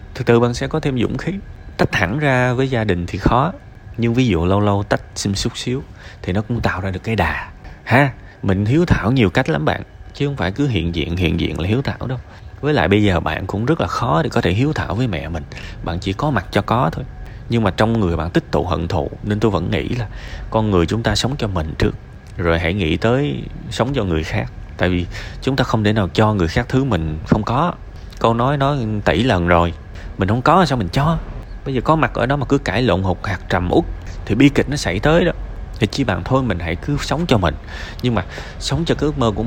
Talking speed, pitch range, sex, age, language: 260 wpm, 95-130 Hz, male, 20-39, Vietnamese